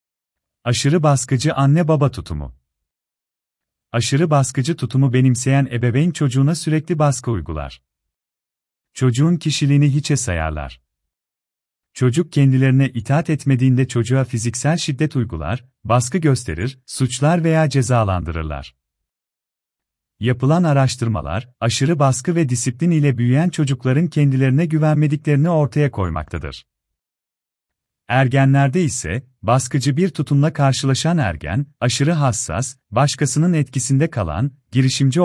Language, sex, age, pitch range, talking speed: Turkish, male, 40-59, 90-145 Hz, 95 wpm